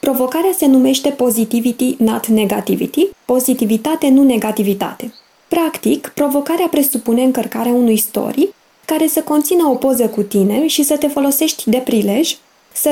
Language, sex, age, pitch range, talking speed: Romanian, female, 20-39, 220-285 Hz, 135 wpm